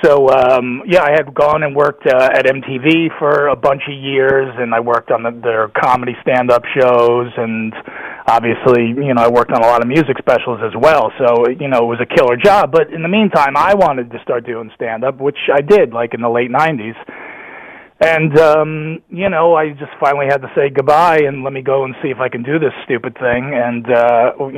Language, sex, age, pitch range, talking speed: English, male, 30-49, 125-150 Hz, 220 wpm